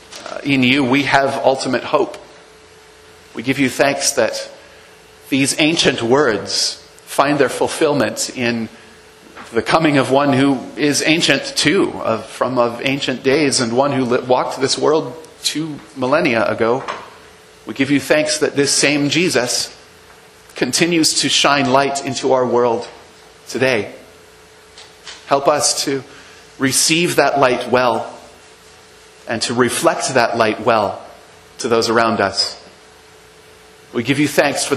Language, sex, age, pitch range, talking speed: English, male, 30-49, 120-145 Hz, 135 wpm